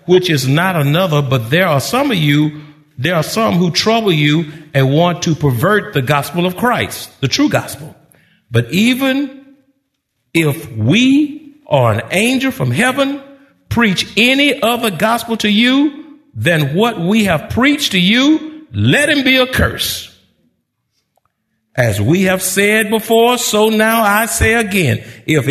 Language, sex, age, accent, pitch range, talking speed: English, male, 50-69, American, 145-240 Hz, 155 wpm